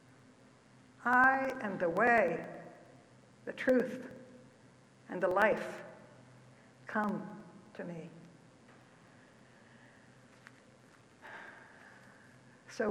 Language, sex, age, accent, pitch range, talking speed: English, female, 60-79, American, 205-270 Hz, 60 wpm